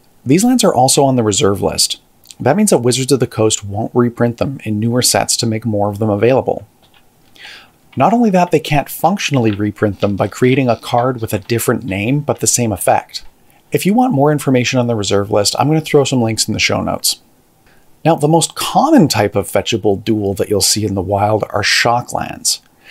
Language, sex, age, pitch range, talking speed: English, male, 40-59, 110-140 Hz, 215 wpm